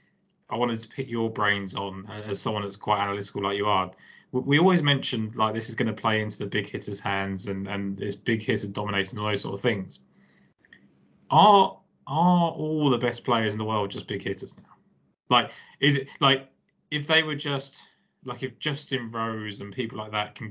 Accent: British